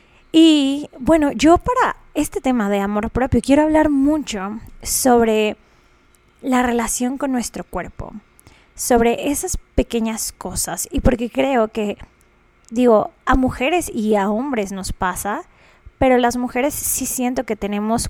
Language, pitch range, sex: Spanish, 210-260 Hz, female